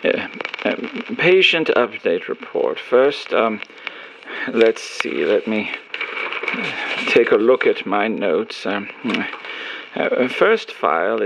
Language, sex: English, male